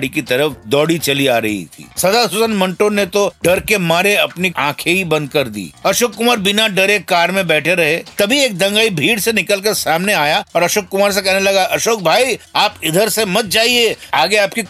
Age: 50-69